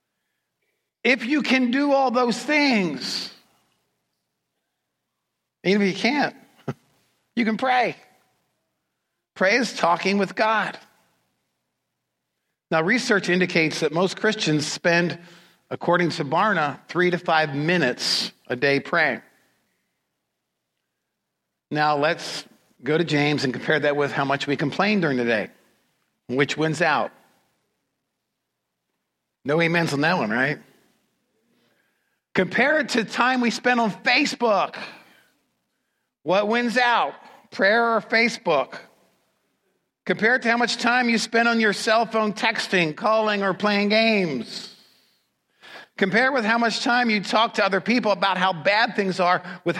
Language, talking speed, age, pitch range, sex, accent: English, 130 wpm, 50-69, 165-230 Hz, male, American